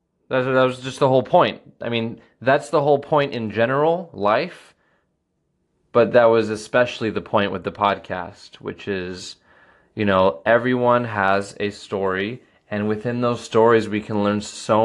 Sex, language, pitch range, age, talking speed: male, English, 100-115 Hz, 20-39, 160 wpm